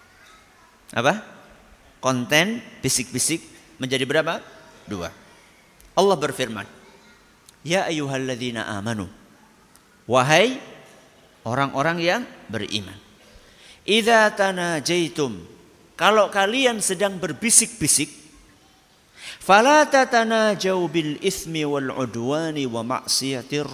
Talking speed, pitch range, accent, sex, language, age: 70 wpm, 120-190 Hz, native, male, Indonesian, 50-69